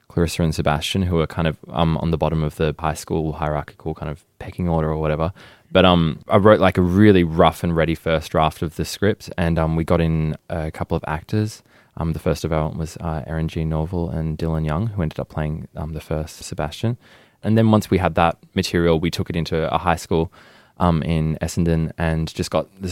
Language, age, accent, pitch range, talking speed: English, 20-39, Australian, 80-90 Hz, 235 wpm